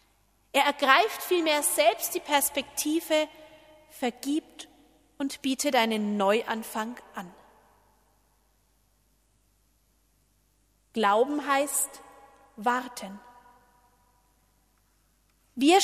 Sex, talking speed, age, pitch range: female, 60 wpm, 40-59, 235-310 Hz